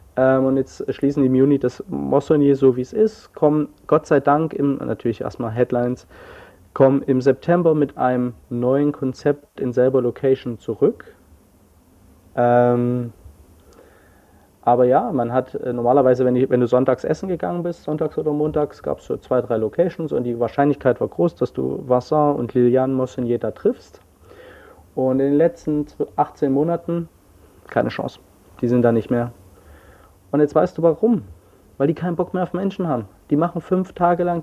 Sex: male